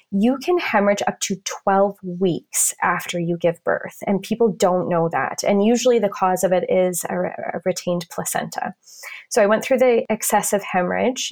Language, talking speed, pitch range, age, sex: English, 180 wpm, 180-215 Hz, 20-39, female